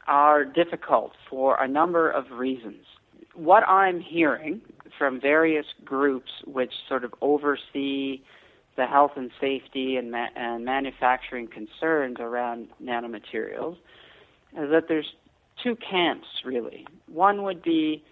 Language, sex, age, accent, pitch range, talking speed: English, male, 50-69, American, 125-155 Hz, 125 wpm